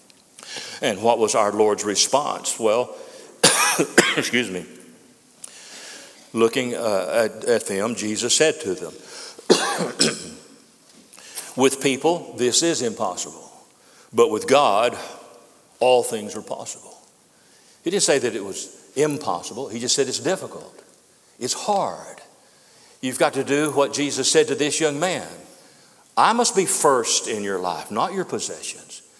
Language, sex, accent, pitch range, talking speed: English, male, American, 125-195 Hz, 135 wpm